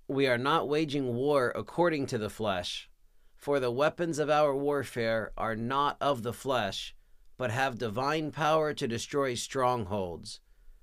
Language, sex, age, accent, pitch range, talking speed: English, male, 40-59, American, 105-135 Hz, 150 wpm